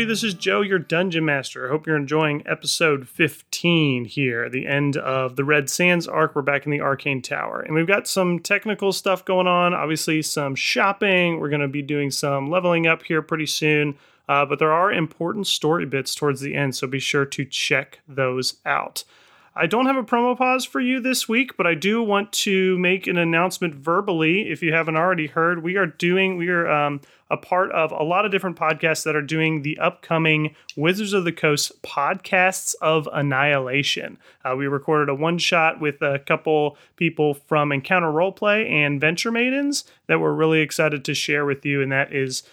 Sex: male